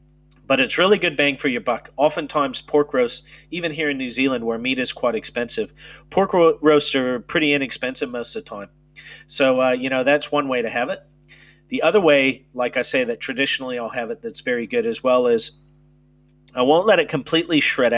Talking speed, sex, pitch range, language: 215 wpm, male, 130-160 Hz, English